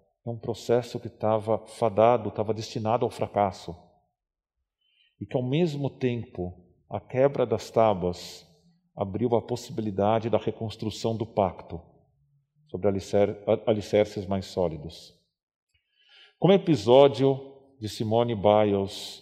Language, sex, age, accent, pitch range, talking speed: Portuguese, male, 40-59, Brazilian, 105-135 Hz, 115 wpm